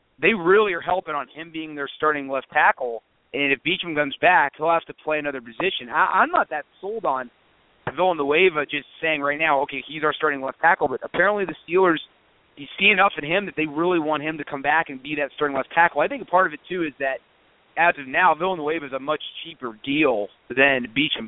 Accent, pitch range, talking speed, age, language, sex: American, 145-180 Hz, 230 wpm, 30-49, English, male